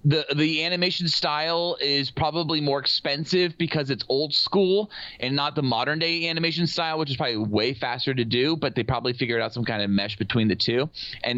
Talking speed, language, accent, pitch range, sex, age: 205 wpm, English, American, 115-160 Hz, male, 30-49